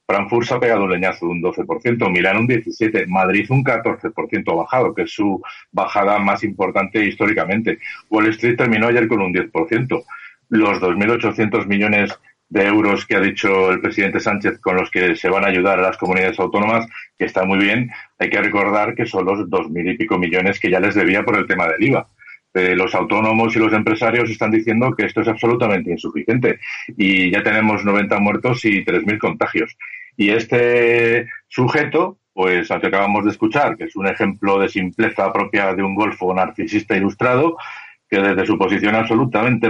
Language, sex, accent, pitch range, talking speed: Spanish, male, Spanish, 100-120 Hz, 185 wpm